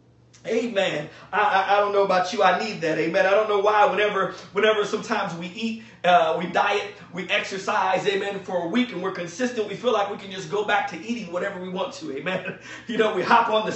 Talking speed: 235 wpm